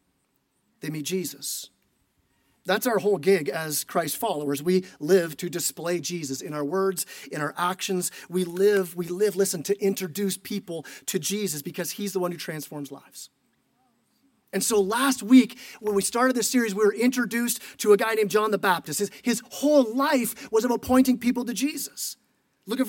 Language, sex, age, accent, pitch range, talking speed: English, male, 30-49, American, 185-250 Hz, 180 wpm